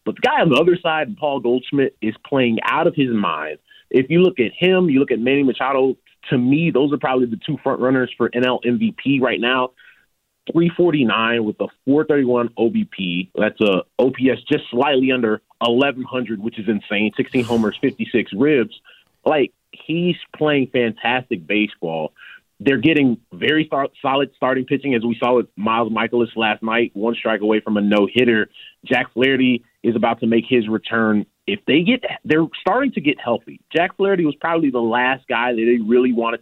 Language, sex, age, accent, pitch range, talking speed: English, male, 30-49, American, 115-145 Hz, 185 wpm